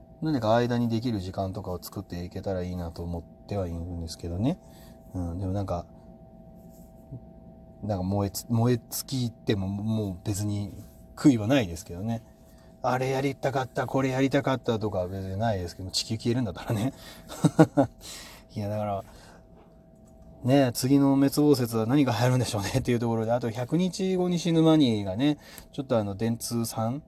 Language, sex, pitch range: Japanese, male, 95-125 Hz